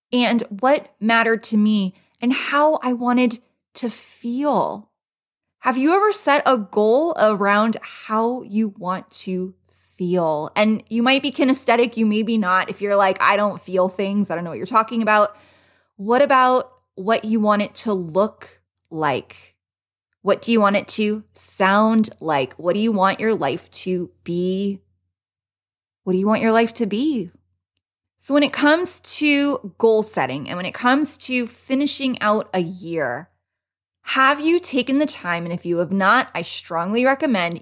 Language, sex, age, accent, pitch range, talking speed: English, female, 20-39, American, 190-250 Hz, 170 wpm